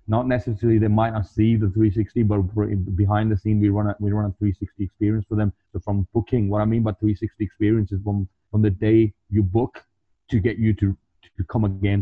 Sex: male